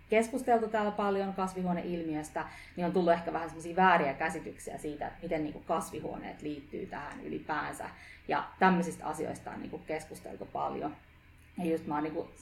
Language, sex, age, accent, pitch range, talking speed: Finnish, female, 30-49, native, 160-185 Hz, 135 wpm